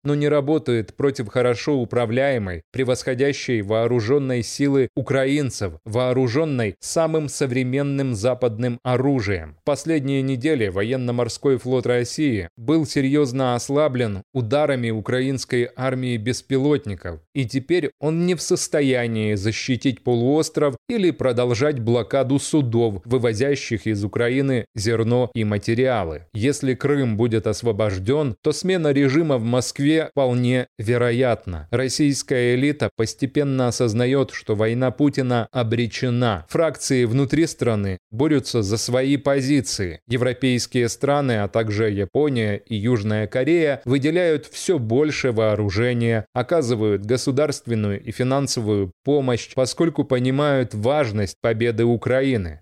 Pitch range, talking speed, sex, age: 115-140 Hz, 105 wpm, male, 20-39